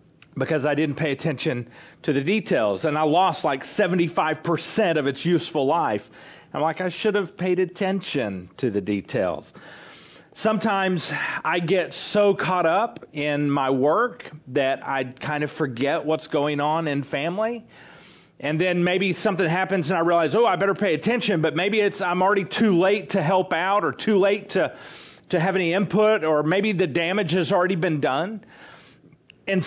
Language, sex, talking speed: English, male, 175 wpm